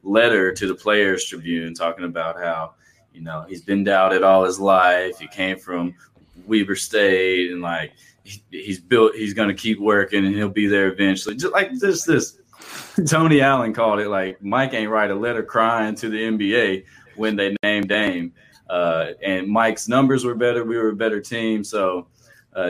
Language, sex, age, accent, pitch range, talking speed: English, male, 20-39, American, 95-110 Hz, 190 wpm